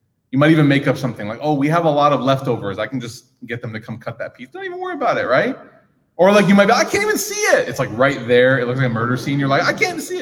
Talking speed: 325 wpm